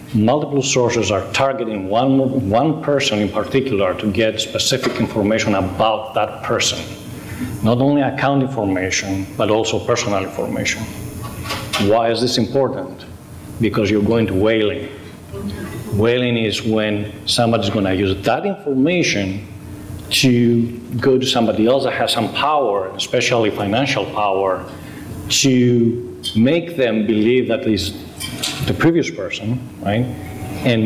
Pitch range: 105-125 Hz